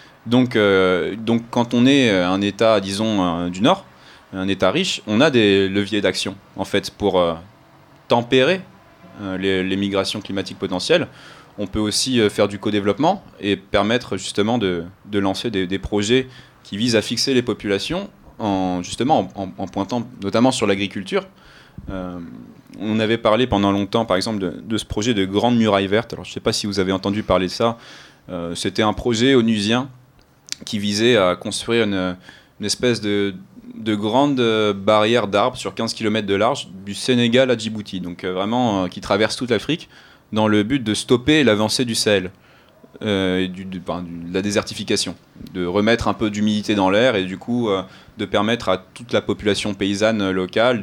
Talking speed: 185 wpm